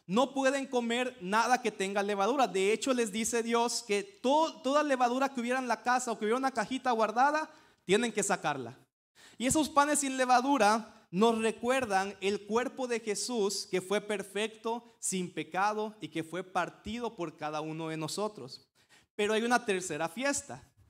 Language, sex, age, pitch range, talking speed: Spanish, male, 30-49, 185-245 Hz, 170 wpm